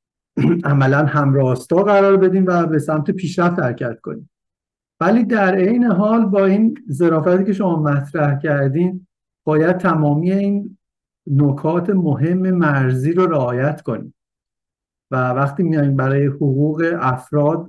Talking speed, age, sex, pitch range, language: 120 wpm, 50-69, male, 130-165 Hz, English